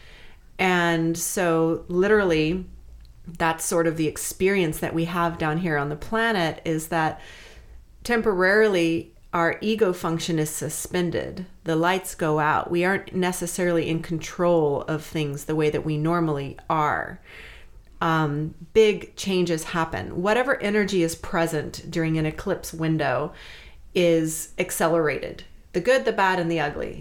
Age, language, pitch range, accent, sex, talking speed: 30-49, English, 165-195 Hz, American, female, 140 wpm